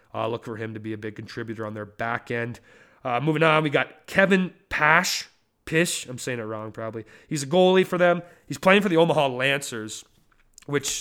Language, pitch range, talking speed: English, 120-140 Hz, 205 wpm